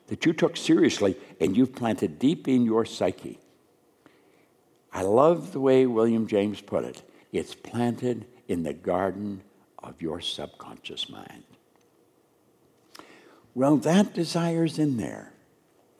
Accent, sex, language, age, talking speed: American, male, English, 60-79, 125 wpm